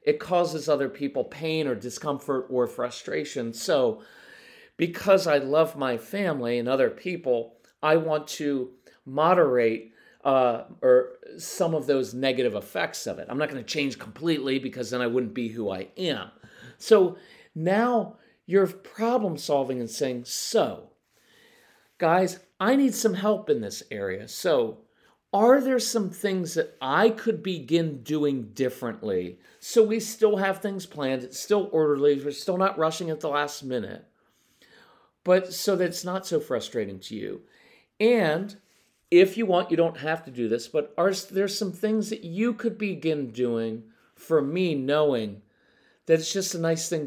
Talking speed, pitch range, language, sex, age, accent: 160 wpm, 135-205 Hz, English, male, 40-59, American